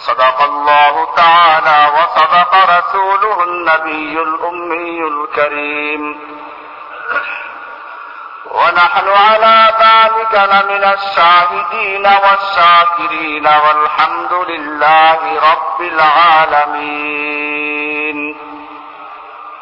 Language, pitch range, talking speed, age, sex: Bengali, 155-190 Hz, 55 wpm, 50-69, male